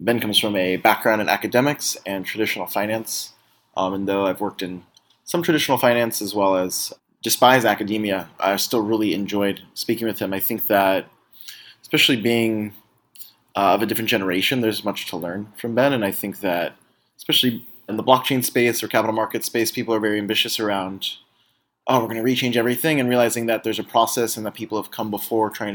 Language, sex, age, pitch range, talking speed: English, male, 20-39, 105-125 Hz, 195 wpm